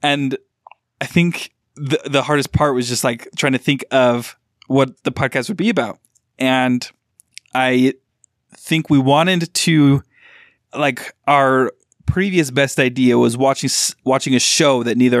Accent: American